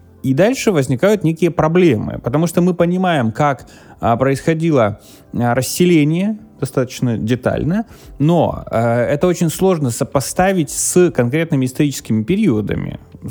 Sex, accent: male, native